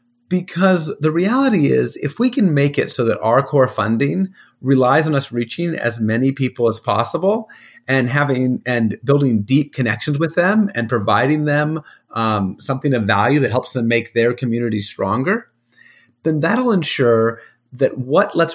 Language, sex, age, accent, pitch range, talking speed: English, male, 30-49, American, 115-145 Hz, 165 wpm